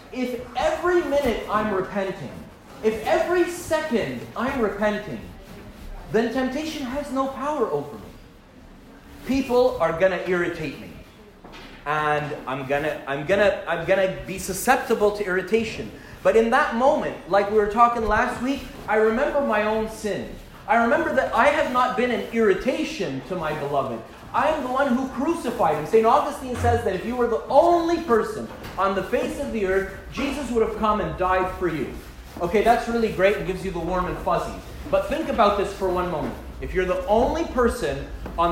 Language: English